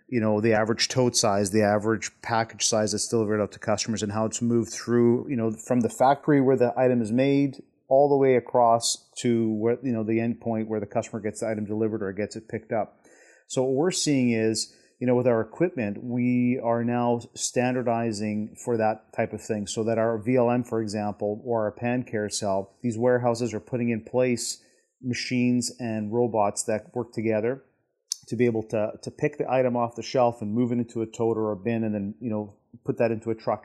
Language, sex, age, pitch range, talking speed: English, male, 30-49, 110-125 Hz, 220 wpm